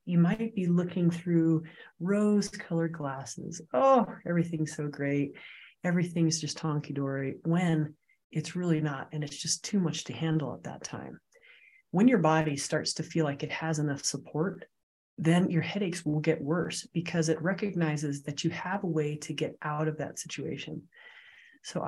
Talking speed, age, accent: 165 wpm, 30-49, American